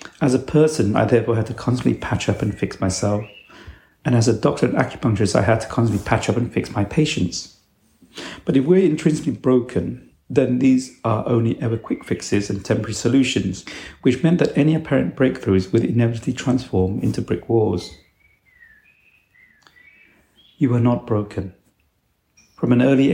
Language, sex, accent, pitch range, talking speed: English, male, British, 100-125 Hz, 165 wpm